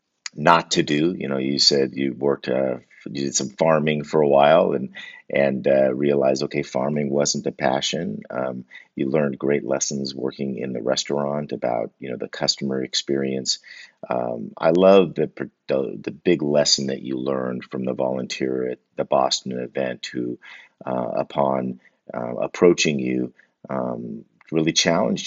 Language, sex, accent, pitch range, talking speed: English, male, American, 65-70 Hz, 160 wpm